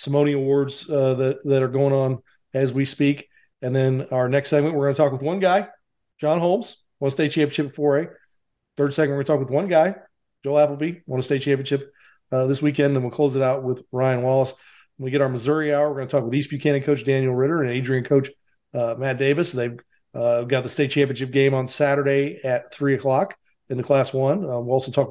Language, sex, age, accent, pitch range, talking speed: English, male, 40-59, American, 130-150 Hz, 235 wpm